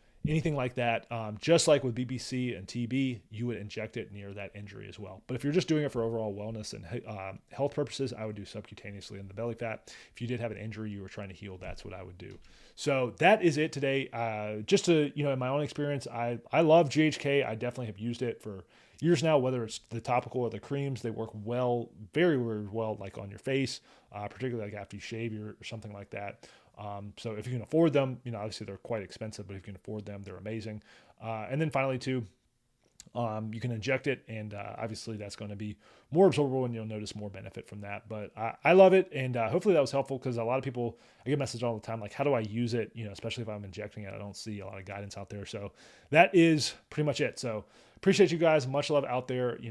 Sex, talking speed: male, 260 wpm